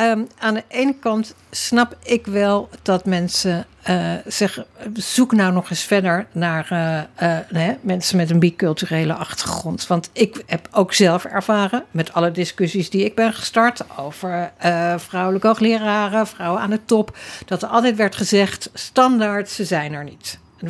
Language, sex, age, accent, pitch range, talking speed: Dutch, female, 60-79, Dutch, 175-225 Hz, 165 wpm